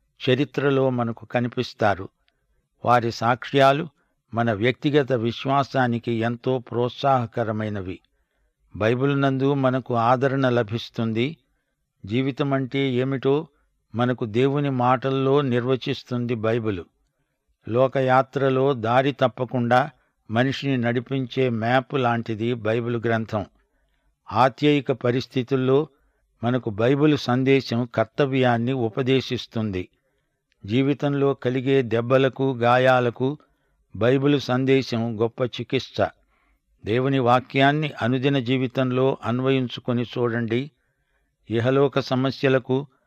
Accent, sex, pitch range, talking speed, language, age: native, male, 120-135 Hz, 75 wpm, Telugu, 60-79